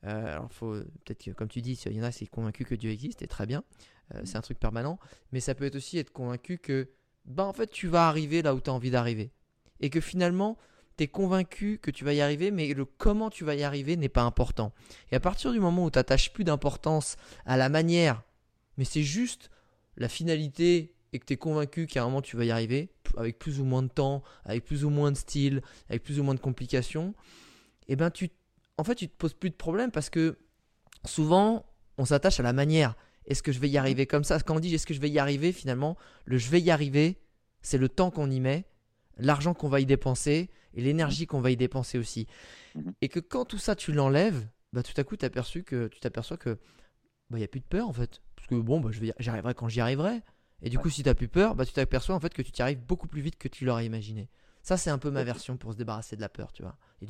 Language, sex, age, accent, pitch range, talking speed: French, male, 20-39, French, 120-165 Hz, 265 wpm